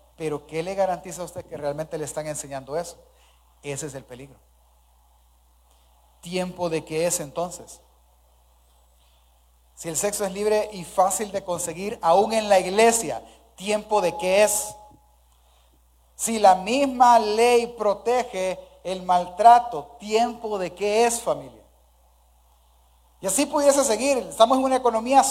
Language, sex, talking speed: Spanish, male, 140 wpm